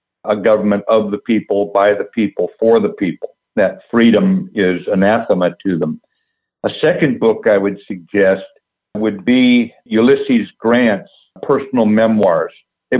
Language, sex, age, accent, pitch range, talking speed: English, male, 60-79, American, 105-135 Hz, 140 wpm